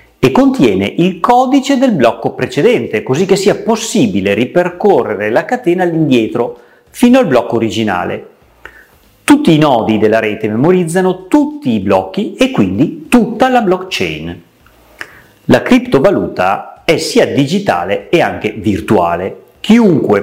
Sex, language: male, Italian